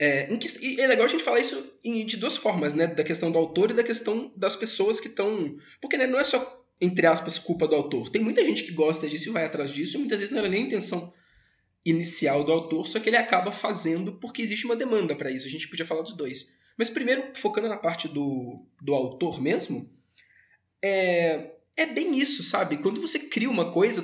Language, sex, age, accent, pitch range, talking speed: Portuguese, male, 20-39, Brazilian, 150-215 Hz, 230 wpm